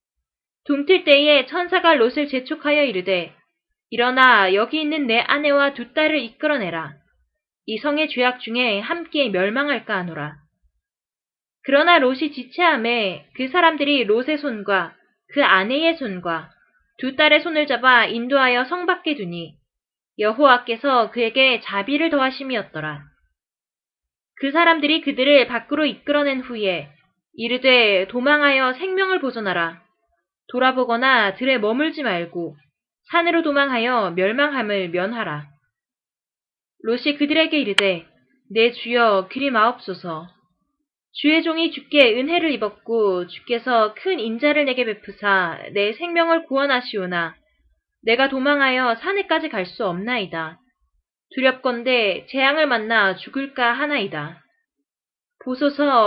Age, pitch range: 20-39, 200-295 Hz